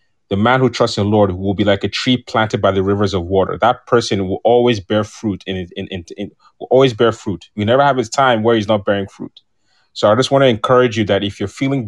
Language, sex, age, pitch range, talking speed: English, male, 30-49, 105-130 Hz, 270 wpm